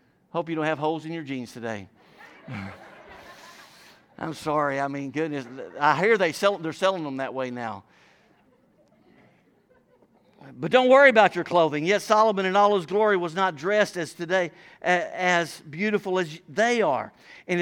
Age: 50-69